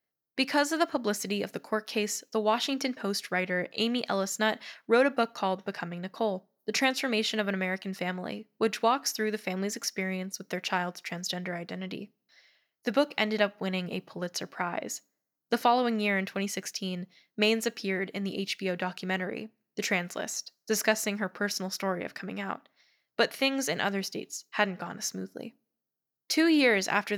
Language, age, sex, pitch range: English, 10-29, female, 185-230 Hz